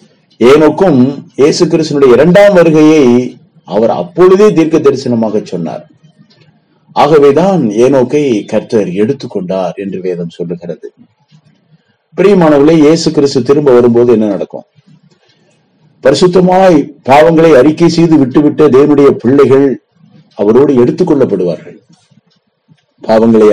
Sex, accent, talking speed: male, native, 90 wpm